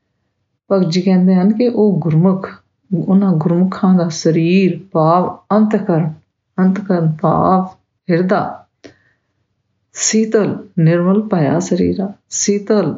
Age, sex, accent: 50-69, female, Indian